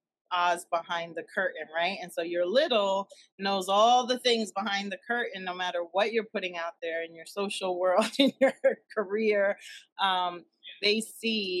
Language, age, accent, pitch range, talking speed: English, 30-49, American, 170-210 Hz, 170 wpm